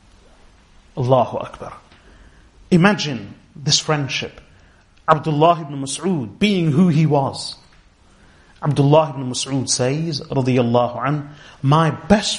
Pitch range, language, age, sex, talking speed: 125-180 Hz, English, 30-49, male, 90 wpm